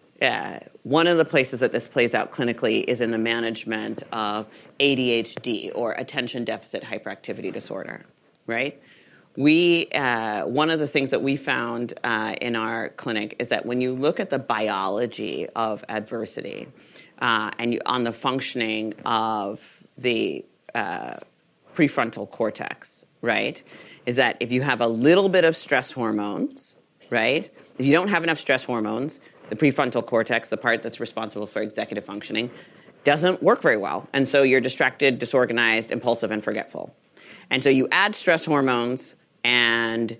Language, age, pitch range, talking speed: English, 40-59, 115-150 Hz, 155 wpm